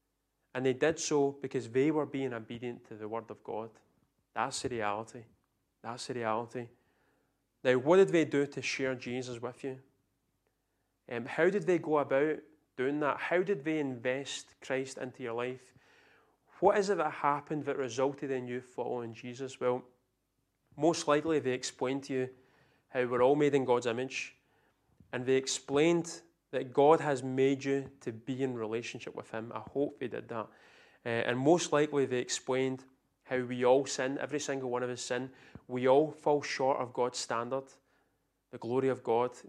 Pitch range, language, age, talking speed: 125-140 Hz, English, 30-49, 180 wpm